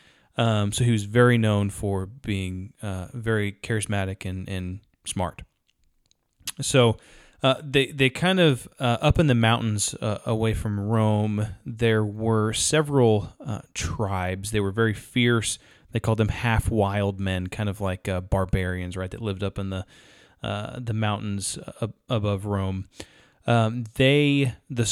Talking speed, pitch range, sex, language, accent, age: 150 wpm, 100-120 Hz, male, English, American, 20-39